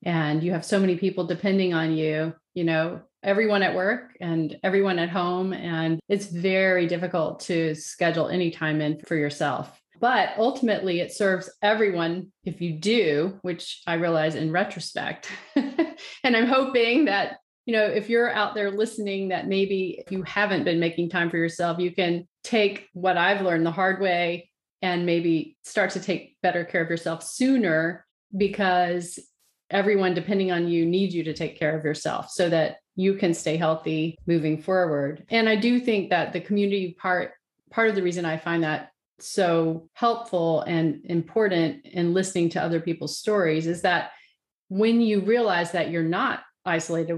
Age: 30-49